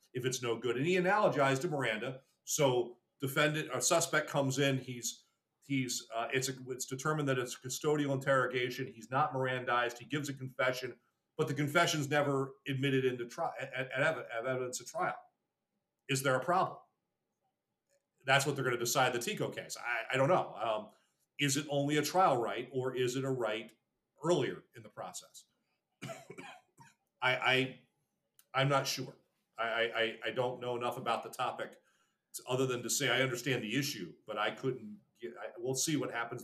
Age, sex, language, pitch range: 40-59, male, English, 125-145 Hz